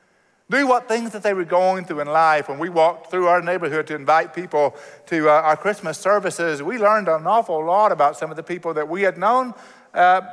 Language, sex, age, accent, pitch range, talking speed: English, male, 60-79, American, 120-170 Hz, 225 wpm